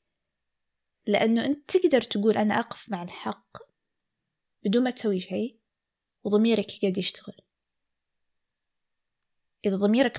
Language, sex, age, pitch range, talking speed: Arabic, female, 20-39, 190-225 Hz, 100 wpm